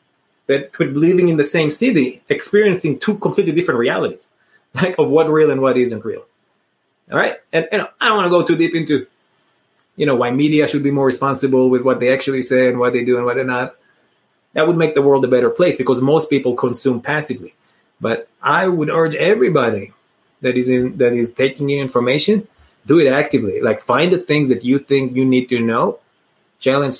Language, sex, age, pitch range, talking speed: English, male, 30-49, 130-165 Hz, 210 wpm